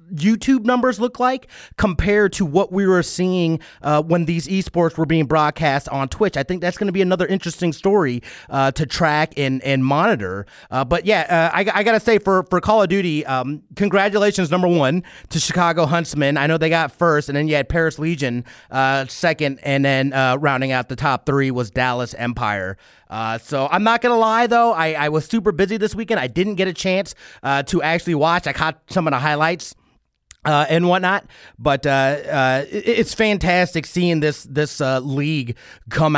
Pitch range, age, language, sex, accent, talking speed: 135-190 Hz, 30-49, English, male, American, 205 wpm